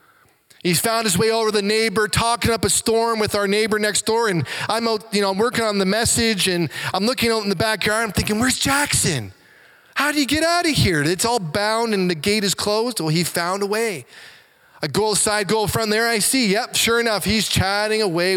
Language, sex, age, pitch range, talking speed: English, male, 20-39, 185-250 Hz, 235 wpm